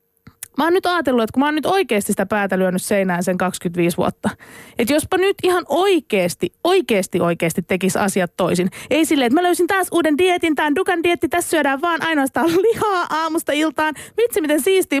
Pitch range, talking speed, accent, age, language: 200-295 Hz, 190 wpm, native, 20-39, Finnish